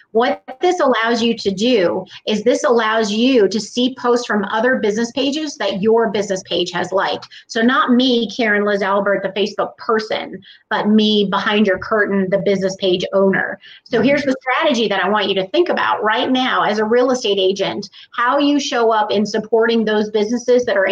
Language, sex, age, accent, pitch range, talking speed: English, female, 30-49, American, 195-235 Hz, 200 wpm